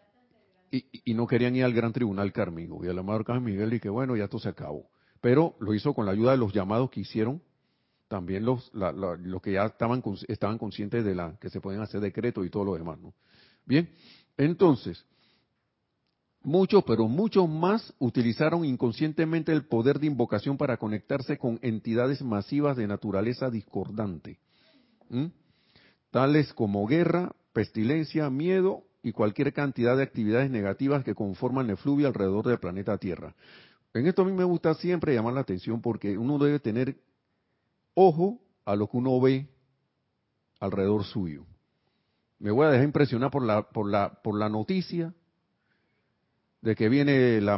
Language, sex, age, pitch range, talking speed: Spanish, male, 50-69, 105-150 Hz, 170 wpm